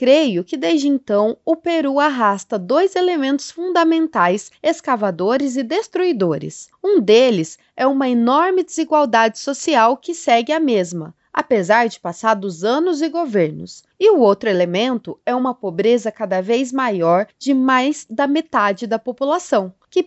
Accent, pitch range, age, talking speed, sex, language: Brazilian, 205-310 Hz, 20-39, 145 wpm, female, Portuguese